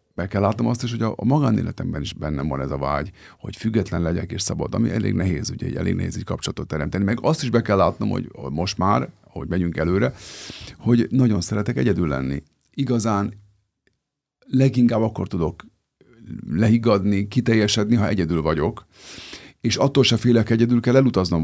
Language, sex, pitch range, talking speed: Hungarian, male, 95-120 Hz, 170 wpm